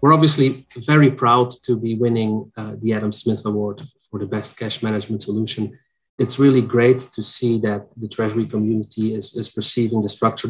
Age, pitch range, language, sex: 30-49, 105-120 Hz, English, male